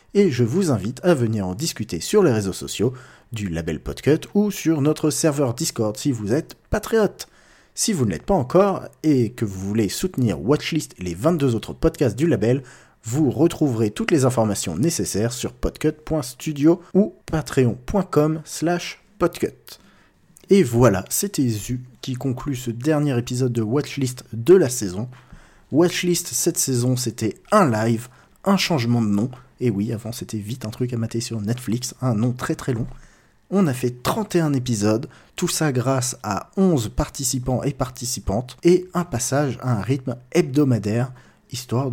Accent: French